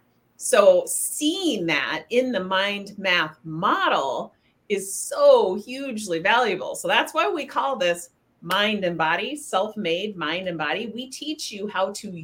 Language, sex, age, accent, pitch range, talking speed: English, female, 30-49, American, 170-245 Hz, 145 wpm